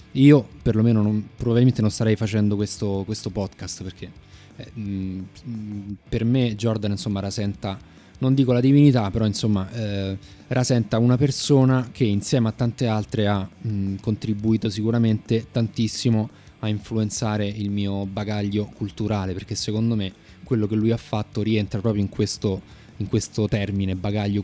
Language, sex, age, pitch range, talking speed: Italian, male, 20-39, 100-115 Hz, 150 wpm